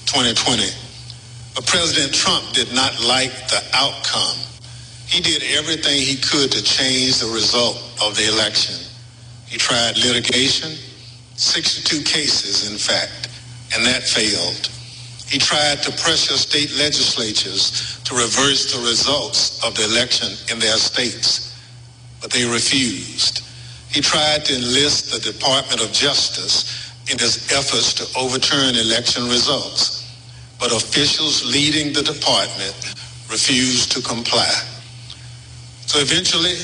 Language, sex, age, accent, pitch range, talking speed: English, male, 50-69, American, 120-140 Hz, 125 wpm